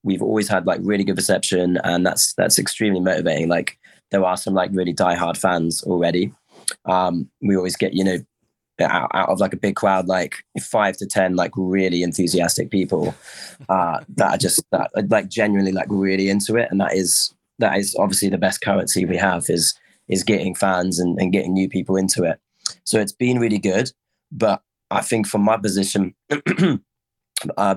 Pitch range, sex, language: 90-100 Hz, male, English